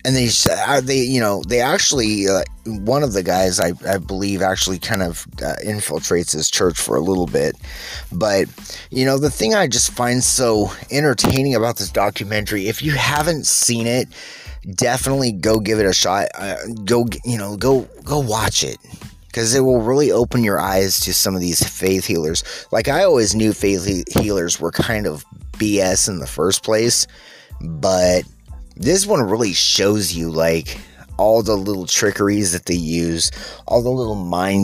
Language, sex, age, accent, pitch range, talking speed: English, male, 30-49, American, 95-125 Hz, 180 wpm